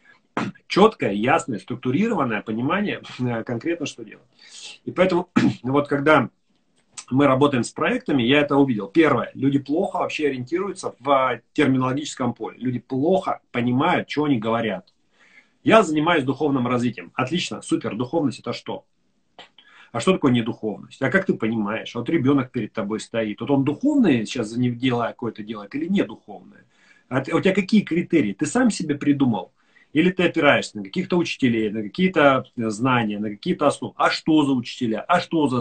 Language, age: Russian, 30-49